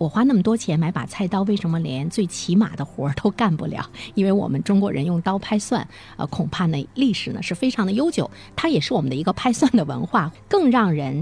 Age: 50-69